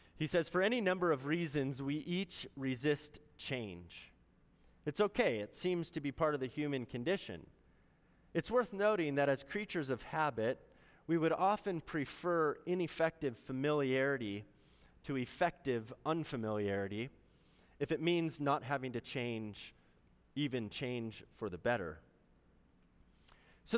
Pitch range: 110-155 Hz